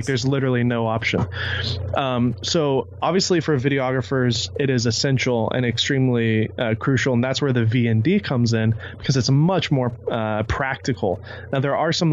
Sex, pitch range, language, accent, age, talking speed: male, 115-135 Hz, English, American, 20-39, 165 wpm